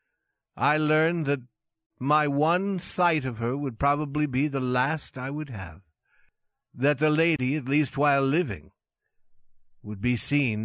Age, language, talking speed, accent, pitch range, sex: 60-79, English, 145 wpm, American, 110-150 Hz, male